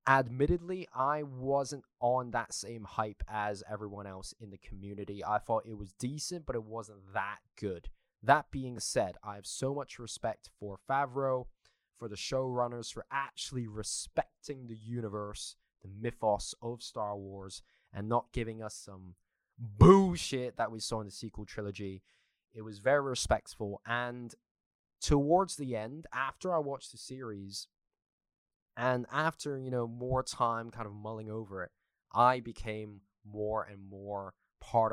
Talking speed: 155 wpm